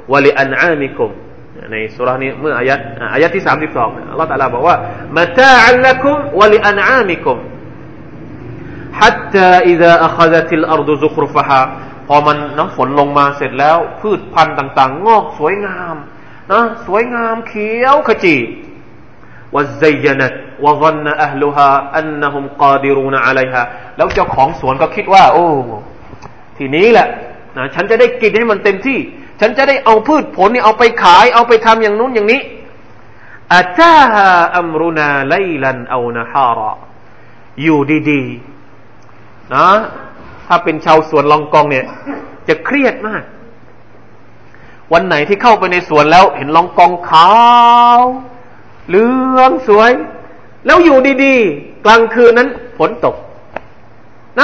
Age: 30-49